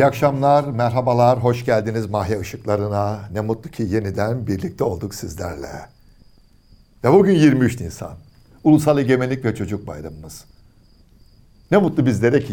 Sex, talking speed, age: male, 130 wpm, 60-79